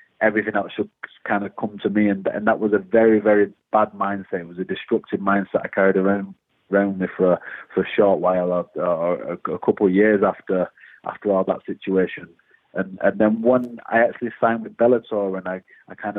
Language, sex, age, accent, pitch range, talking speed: English, male, 30-49, British, 95-105 Hz, 210 wpm